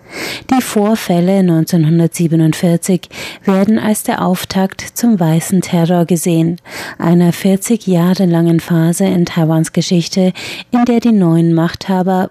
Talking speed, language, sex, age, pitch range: 115 wpm, German, female, 30-49, 170-195 Hz